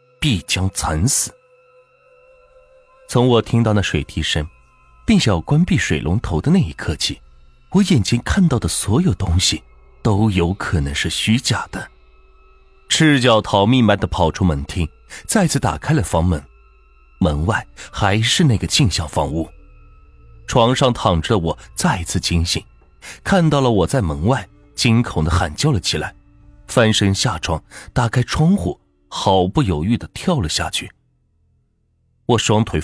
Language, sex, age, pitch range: Chinese, male, 30-49, 85-135 Hz